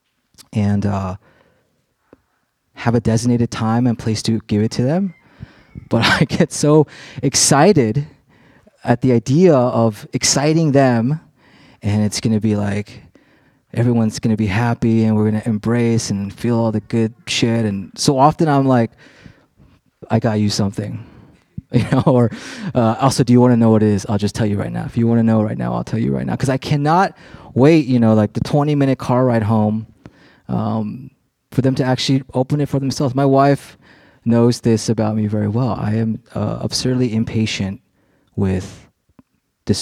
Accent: American